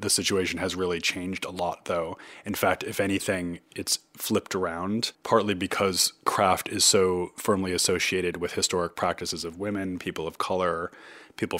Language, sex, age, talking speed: English, male, 30-49, 160 wpm